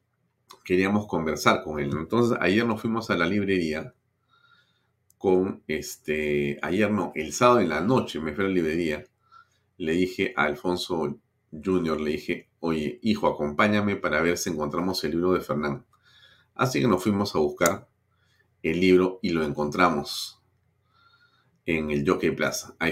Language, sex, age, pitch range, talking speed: Spanish, male, 40-59, 80-105 Hz, 155 wpm